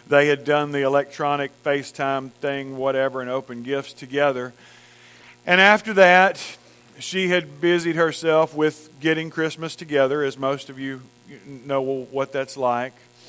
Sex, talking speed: male, 140 wpm